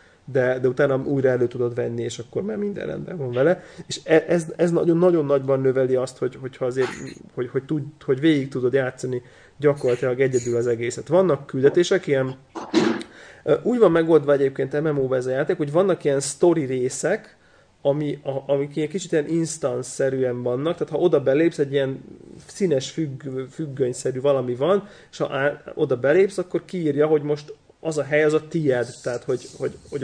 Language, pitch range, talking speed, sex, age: Hungarian, 130-160 Hz, 170 wpm, male, 30-49